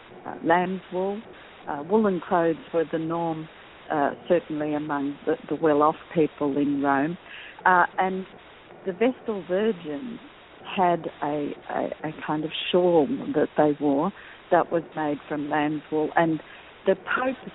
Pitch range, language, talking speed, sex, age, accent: 160-200 Hz, English, 145 wpm, female, 50-69, Australian